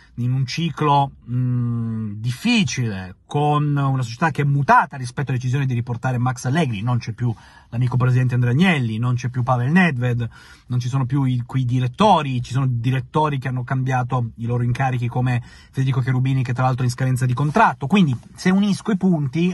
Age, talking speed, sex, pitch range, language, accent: 30-49, 185 wpm, male, 125-165 Hz, Italian, native